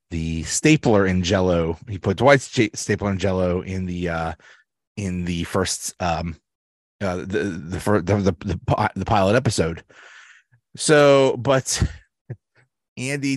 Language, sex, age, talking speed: English, male, 30-49, 130 wpm